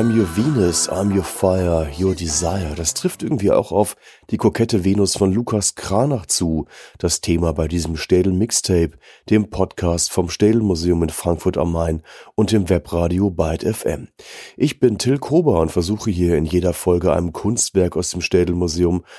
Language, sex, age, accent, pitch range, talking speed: German, male, 30-49, German, 85-100 Hz, 165 wpm